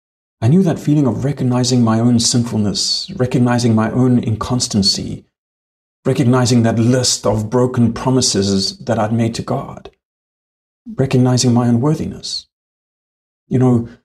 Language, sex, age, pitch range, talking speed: English, male, 40-59, 100-125 Hz, 125 wpm